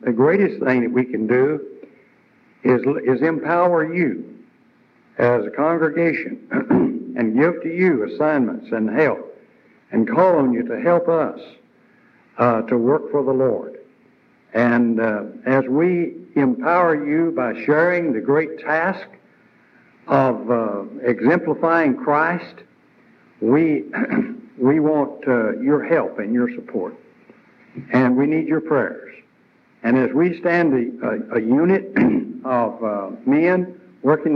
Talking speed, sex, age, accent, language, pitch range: 130 wpm, male, 60-79, American, English, 130-190 Hz